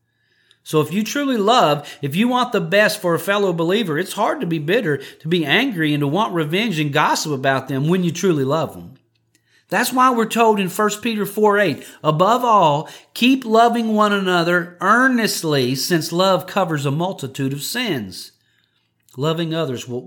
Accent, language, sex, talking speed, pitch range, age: American, English, male, 180 wpm, 135-205 Hz, 40-59